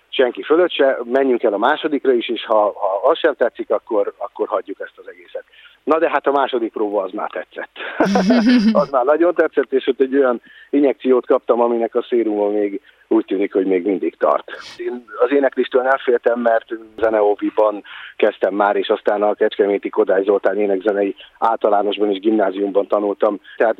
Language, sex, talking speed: Hungarian, male, 170 wpm